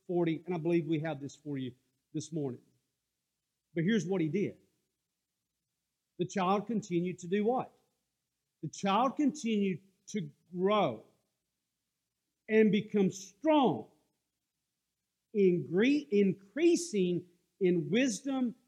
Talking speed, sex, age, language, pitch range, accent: 105 wpm, male, 50-69, English, 175-235 Hz, American